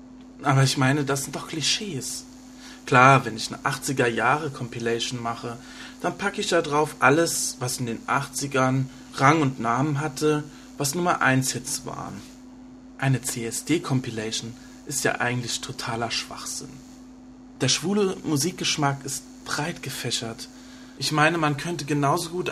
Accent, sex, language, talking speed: German, male, German, 135 wpm